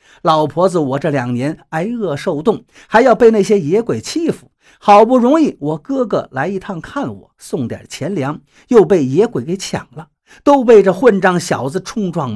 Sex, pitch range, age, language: male, 150-220 Hz, 50-69, Chinese